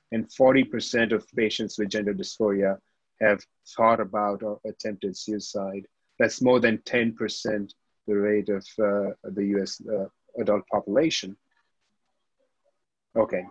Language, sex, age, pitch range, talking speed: English, male, 30-49, 105-120 Hz, 120 wpm